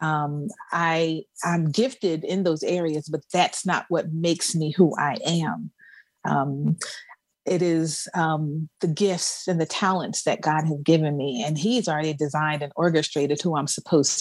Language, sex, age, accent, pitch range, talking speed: English, female, 40-59, American, 155-190 Hz, 165 wpm